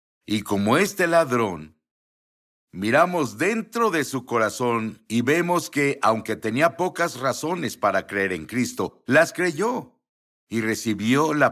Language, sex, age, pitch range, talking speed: English, male, 60-79, 100-130 Hz, 130 wpm